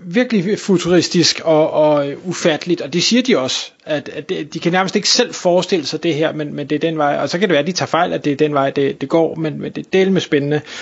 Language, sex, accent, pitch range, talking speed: Danish, male, native, 150-180 Hz, 285 wpm